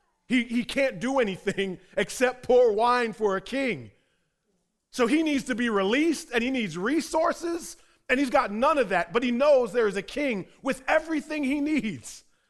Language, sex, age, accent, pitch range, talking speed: English, male, 30-49, American, 160-235 Hz, 180 wpm